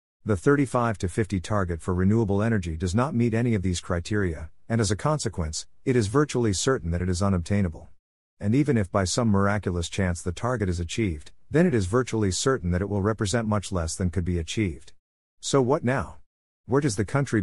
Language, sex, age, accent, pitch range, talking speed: English, male, 50-69, American, 90-115 Hz, 205 wpm